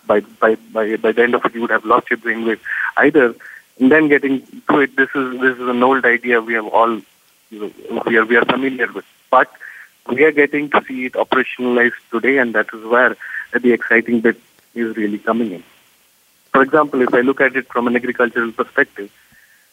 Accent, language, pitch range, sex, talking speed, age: Indian, English, 115-130 Hz, male, 215 wpm, 30-49